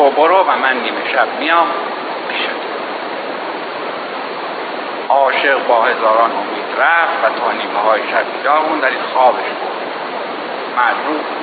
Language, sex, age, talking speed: Persian, male, 60-79, 115 wpm